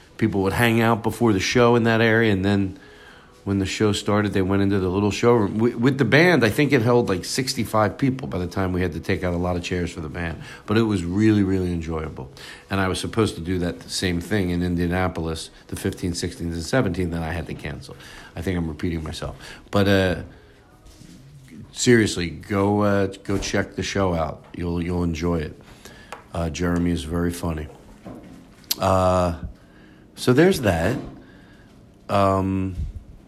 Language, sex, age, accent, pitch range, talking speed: English, male, 50-69, American, 90-120 Hz, 190 wpm